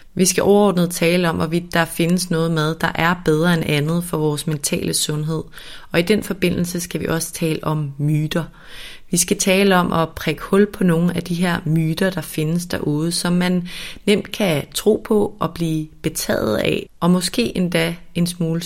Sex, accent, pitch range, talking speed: female, native, 155-180 Hz, 195 wpm